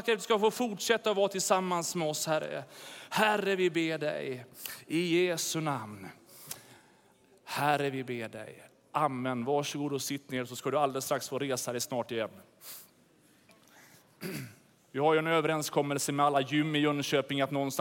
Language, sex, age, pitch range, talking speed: Swedish, male, 30-49, 140-195 Hz, 160 wpm